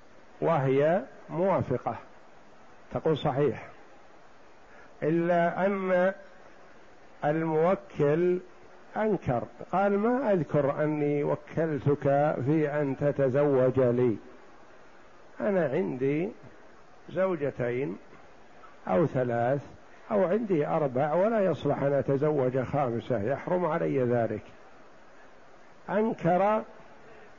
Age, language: 60-79, Arabic